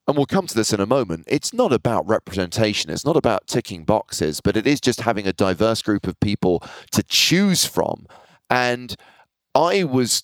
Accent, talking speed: British, 195 wpm